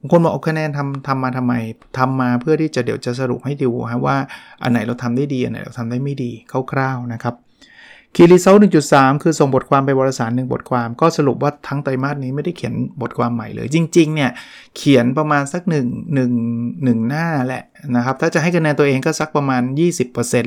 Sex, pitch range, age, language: male, 120-145 Hz, 20-39, Thai